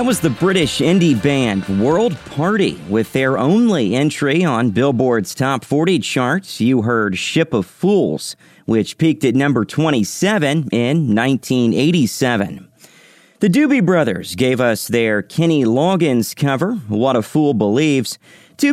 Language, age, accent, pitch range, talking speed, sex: English, 40-59, American, 120-170 Hz, 140 wpm, male